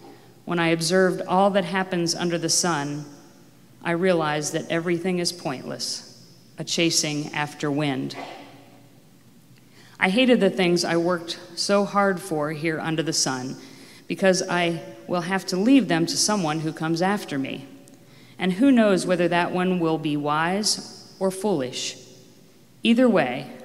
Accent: American